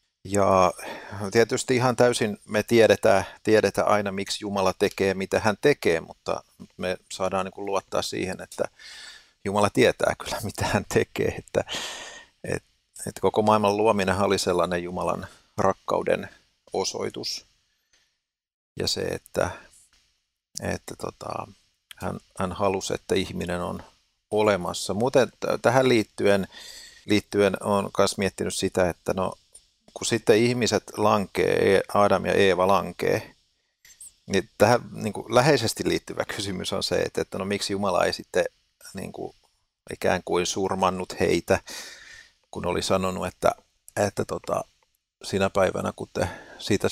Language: Finnish